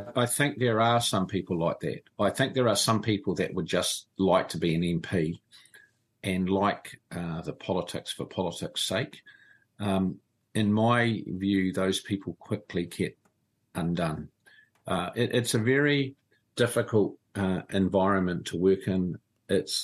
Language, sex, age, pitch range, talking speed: English, male, 50-69, 95-115 Hz, 155 wpm